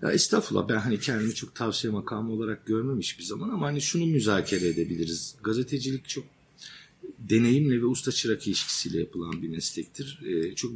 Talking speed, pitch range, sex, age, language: 155 wpm, 95-115 Hz, male, 50-69, Turkish